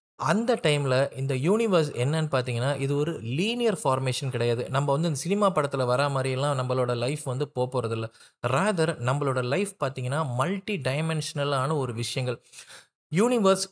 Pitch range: 130-175 Hz